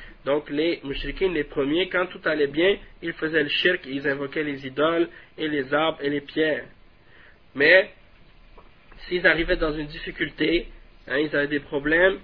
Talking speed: 170 wpm